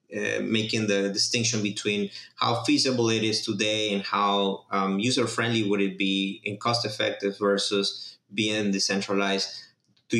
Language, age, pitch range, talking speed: English, 20-39, 100-115 Hz, 145 wpm